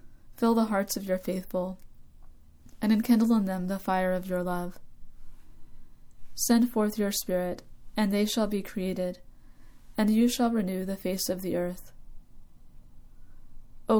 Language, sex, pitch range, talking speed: English, female, 180-215 Hz, 145 wpm